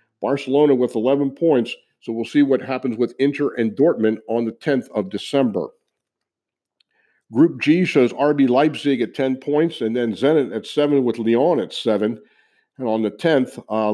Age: 50-69